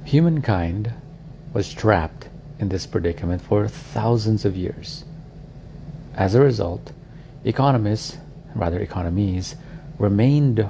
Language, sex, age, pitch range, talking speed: English, male, 50-69, 100-150 Hz, 95 wpm